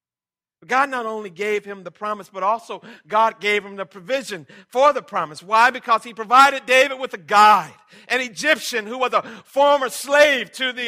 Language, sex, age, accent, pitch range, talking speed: English, male, 50-69, American, 205-285 Hz, 190 wpm